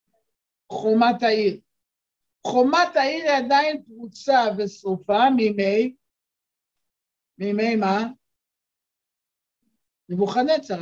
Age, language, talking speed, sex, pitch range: 60-79, Hebrew, 65 wpm, male, 200-255 Hz